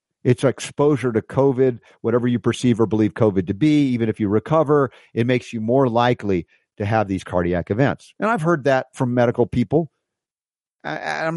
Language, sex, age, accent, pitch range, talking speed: English, male, 50-69, American, 105-130 Hz, 180 wpm